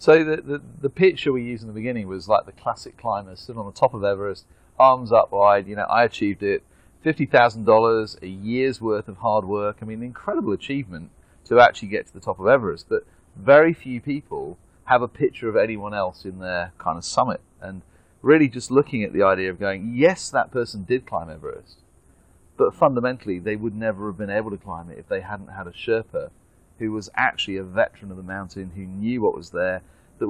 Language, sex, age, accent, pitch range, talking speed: English, male, 30-49, British, 95-130 Hz, 220 wpm